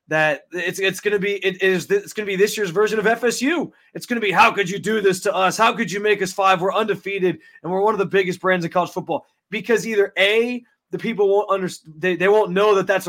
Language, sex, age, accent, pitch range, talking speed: English, male, 20-39, American, 155-195 Hz, 270 wpm